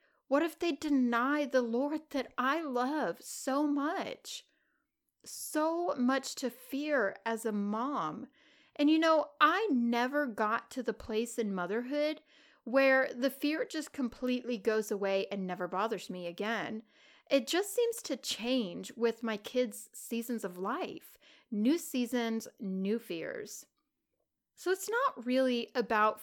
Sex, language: female, English